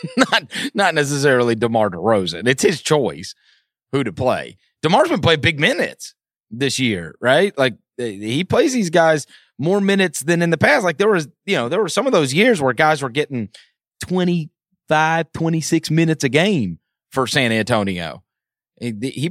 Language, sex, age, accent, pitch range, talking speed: English, male, 30-49, American, 110-155 Hz, 175 wpm